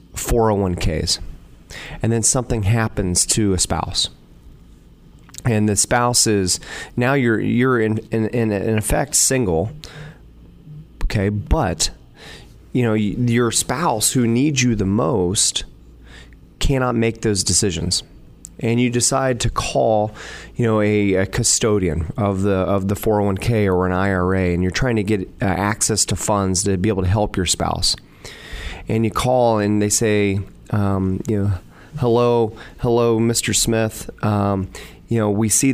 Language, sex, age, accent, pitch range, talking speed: English, male, 30-49, American, 95-115 Hz, 145 wpm